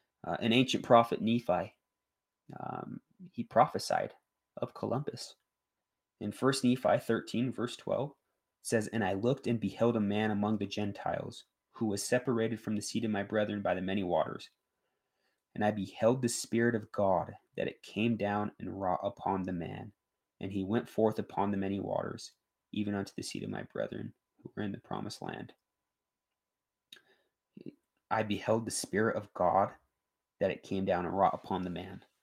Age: 20-39